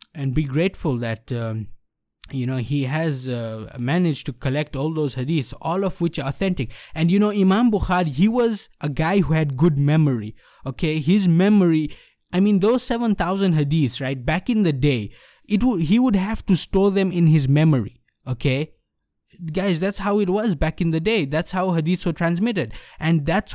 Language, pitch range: English, 140-185 Hz